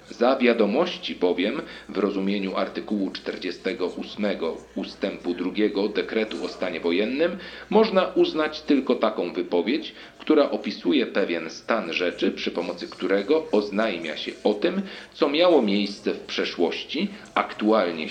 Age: 40-59